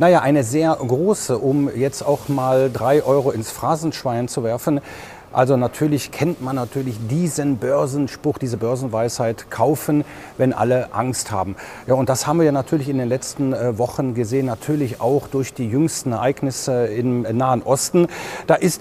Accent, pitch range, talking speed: German, 130-165 Hz, 165 wpm